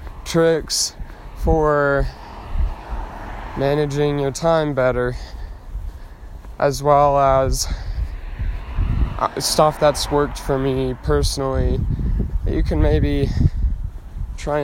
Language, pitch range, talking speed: English, 90-145 Hz, 80 wpm